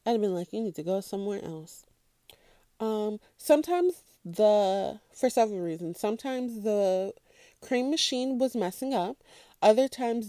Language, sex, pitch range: English, female, 185-235 Hz